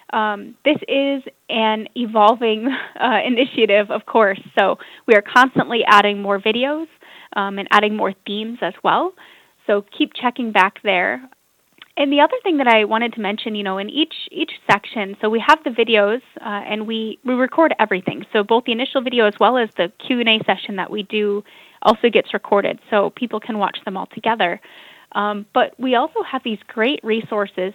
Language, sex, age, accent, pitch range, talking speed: English, female, 20-39, American, 205-245 Hz, 185 wpm